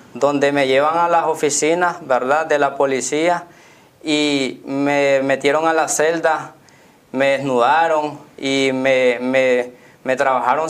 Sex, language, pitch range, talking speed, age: male, Spanish, 135-155 Hz, 130 wpm, 20-39